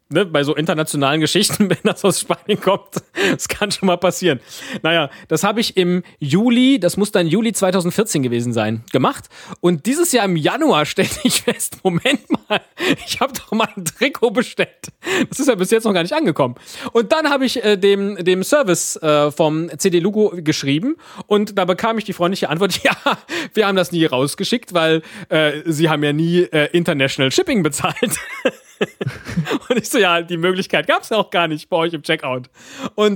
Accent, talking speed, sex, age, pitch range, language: German, 195 wpm, male, 30-49, 155-210 Hz, German